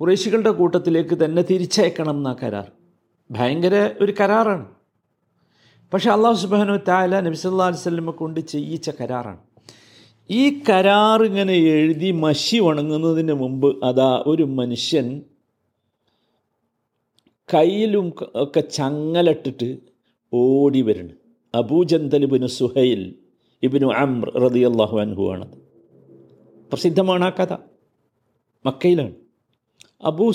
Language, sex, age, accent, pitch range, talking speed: Malayalam, male, 50-69, native, 140-205 Hz, 80 wpm